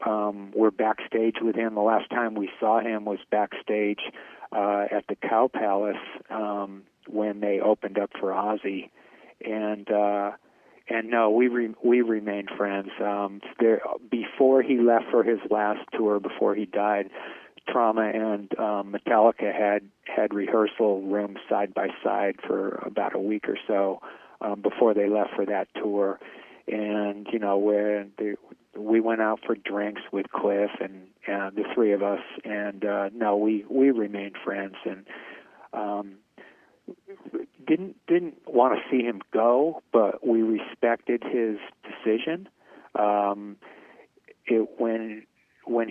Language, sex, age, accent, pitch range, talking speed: English, male, 40-59, American, 100-115 Hz, 150 wpm